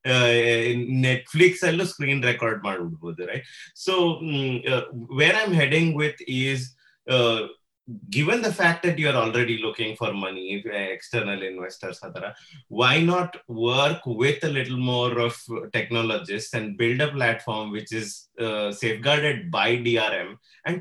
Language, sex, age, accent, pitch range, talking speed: Kannada, male, 30-49, native, 115-145 Hz, 145 wpm